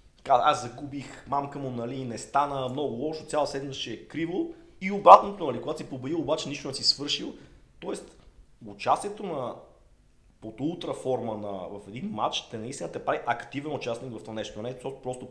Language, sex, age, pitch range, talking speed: Bulgarian, male, 30-49, 110-140 Hz, 175 wpm